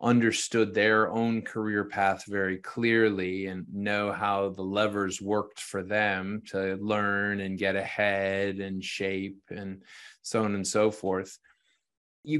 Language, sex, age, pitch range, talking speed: English, male, 20-39, 100-120 Hz, 140 wpm